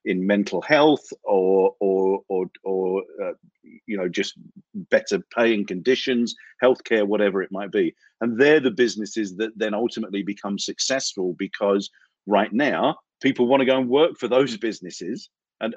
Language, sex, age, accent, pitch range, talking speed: English, male, 50-69, British, 105-125 Hz, 155 wpm